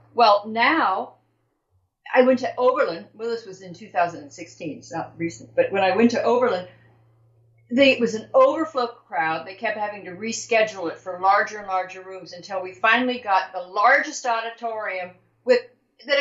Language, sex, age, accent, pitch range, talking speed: English, female, 50-69, American, 180-265 Hz, 170 wpm